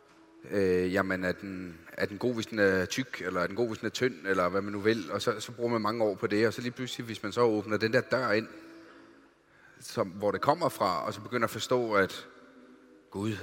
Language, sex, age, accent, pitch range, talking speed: English, male, 30-49, Danish, 95-125 Hz, 265 wpm